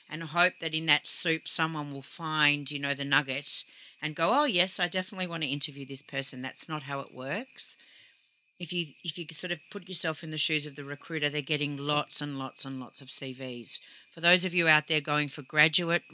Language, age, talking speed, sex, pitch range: English, 40-59, 225 wpm, female, 140-170 Hz